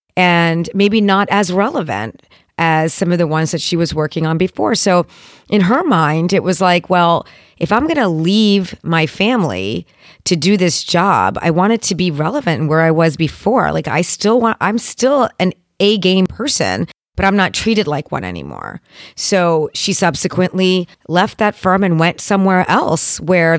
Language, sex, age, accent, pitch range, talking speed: English, female, 40-59, American, 160-195 Hz, 185 wpm